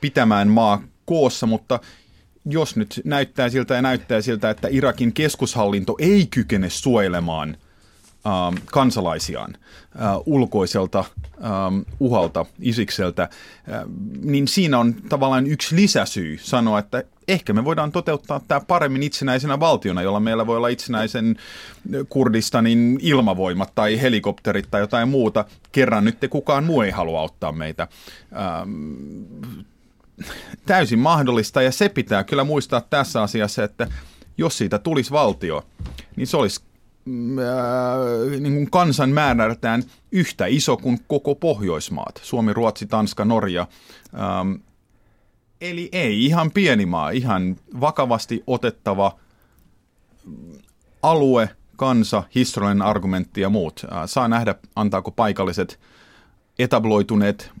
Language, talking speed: Finnish, 120 wpm